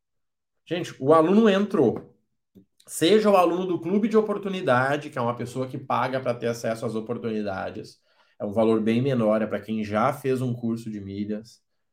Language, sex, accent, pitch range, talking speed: Portuguese, male, Brazilian, 130-195 Hz, 180 wpm